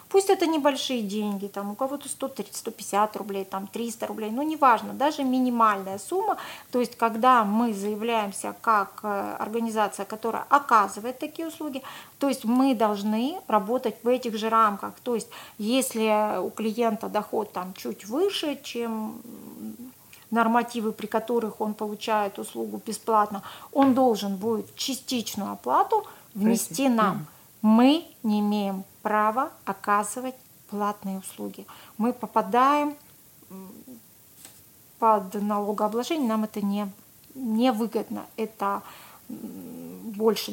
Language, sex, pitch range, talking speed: Russian, female, 205-245 Hz, 115 wpm